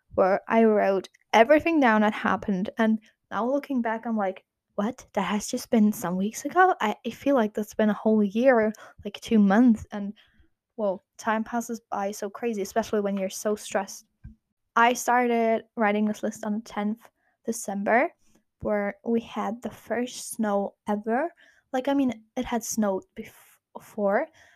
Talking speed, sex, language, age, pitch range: 165 wpm, female, German, 10-29, 205-240 Hz